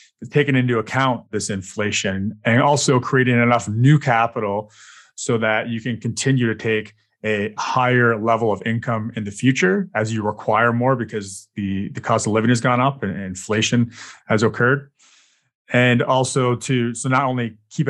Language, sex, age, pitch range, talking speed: English, male, 30-49, 110-130 Hz, 170 wpm